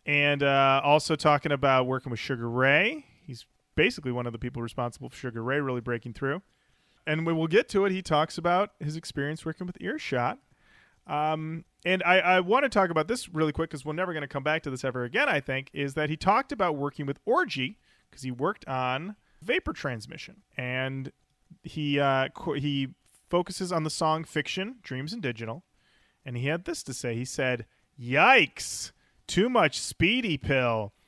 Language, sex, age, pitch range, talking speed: English, male, 30-49, 130-170 Hz, 195 wpm